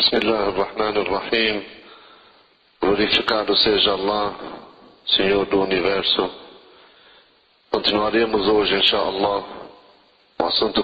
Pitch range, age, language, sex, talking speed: 105-120 Hz, 40-59, Portuguese, male, 80 wpm